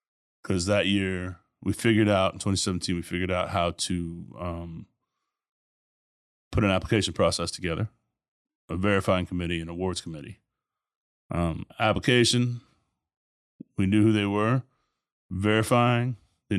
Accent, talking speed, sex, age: American, 125 wpm, male, 30-49